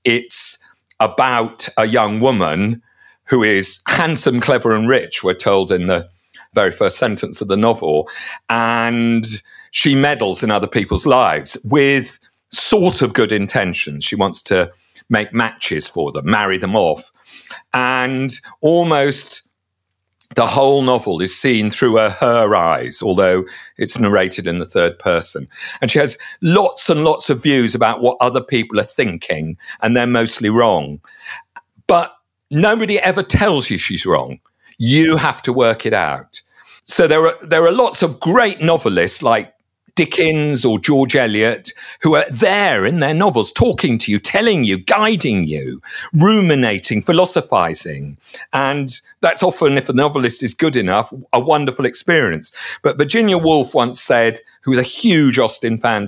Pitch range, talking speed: 110-155 Hz, 155 wpm